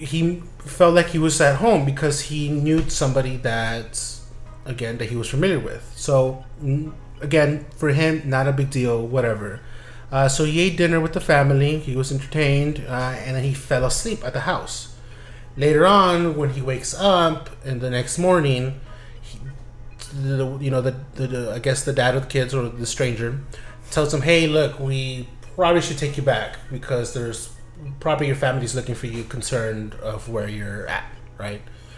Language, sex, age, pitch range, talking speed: English, male, 30-49, 120-145 Hz, 180 wpm